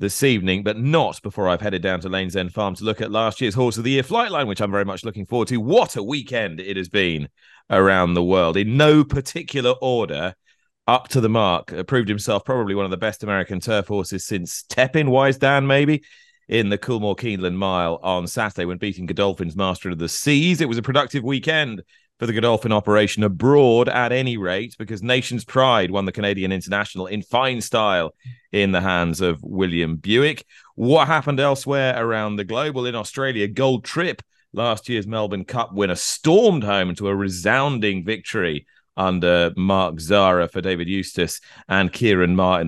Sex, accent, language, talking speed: male, British, English, 195 wpm